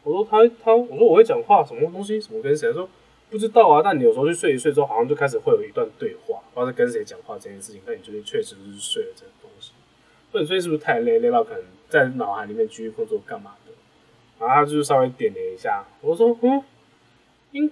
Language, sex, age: Chinese, male, 20-39